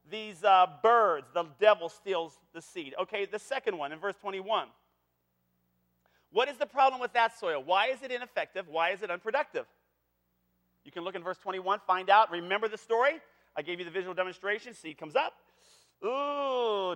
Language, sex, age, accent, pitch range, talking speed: English, male, 40-59, American, 165-245 Hz, 180 wpm